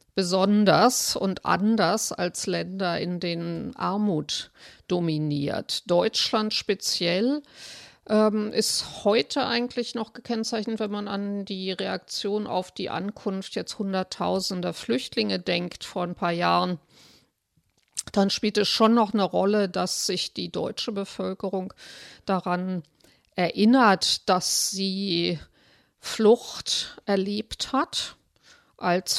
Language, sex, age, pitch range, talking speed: German, female, 50-69, 180-215 Hz, 110 wpm